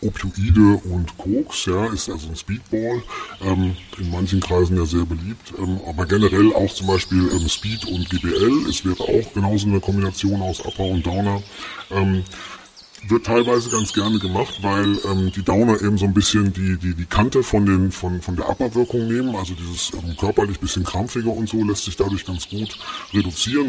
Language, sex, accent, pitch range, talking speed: German, female, German, 95-110 Hz, 185 wpm